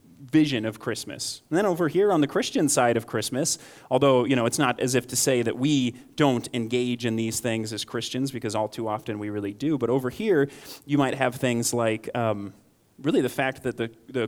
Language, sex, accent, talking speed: English, male, American, 225 wpm